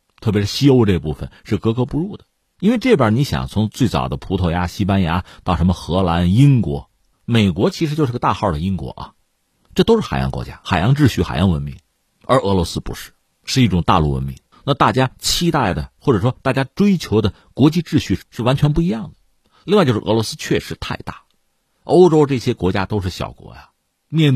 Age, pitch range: 50-69, 95-145 Hz